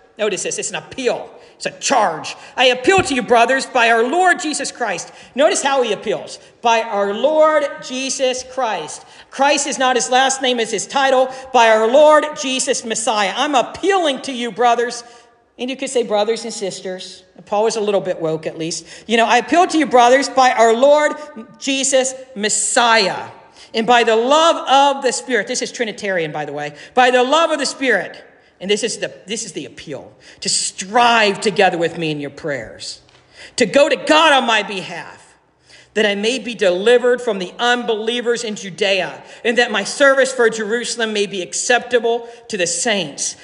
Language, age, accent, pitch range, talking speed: English, 50-69, American, 210-270 Hz, 190 wpm